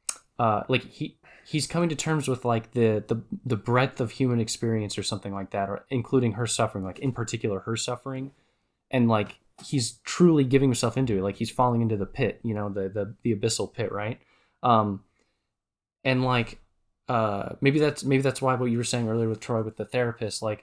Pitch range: 110-130 Hz